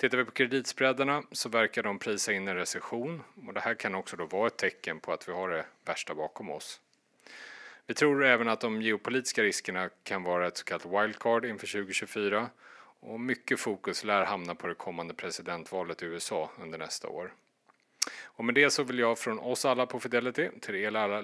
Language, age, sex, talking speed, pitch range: Swedish, 30-49, male, 200 wpm, 110-180 Hz